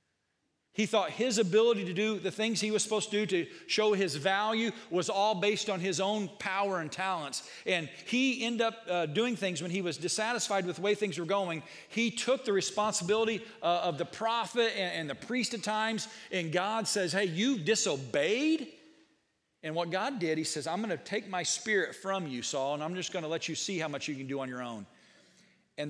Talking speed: 220 wpm